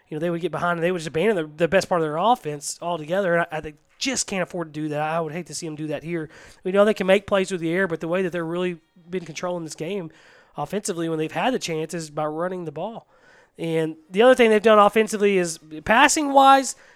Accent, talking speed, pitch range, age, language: American, 270 wpm, 165-210 Hz, 20-39, English